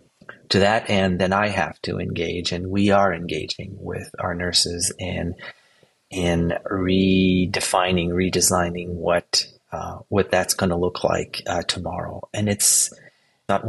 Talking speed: 140 wpm